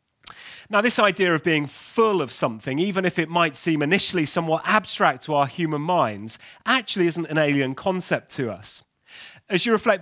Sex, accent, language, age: male, British, English, 30-49